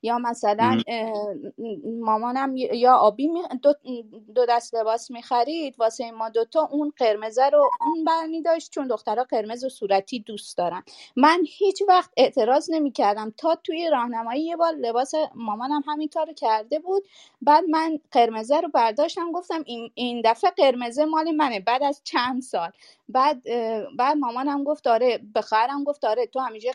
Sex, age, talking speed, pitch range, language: female, 30-49, 155 wpm, 225-300 Hz, Persian